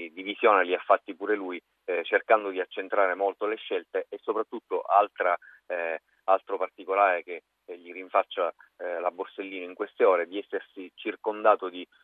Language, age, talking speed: Italian, 30-49, 160 wpm